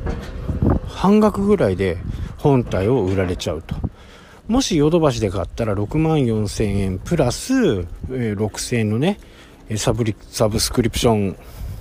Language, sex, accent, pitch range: Japanese, male, native, 90-140 Hz